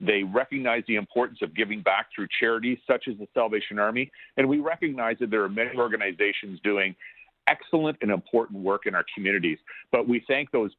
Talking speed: 190 wpm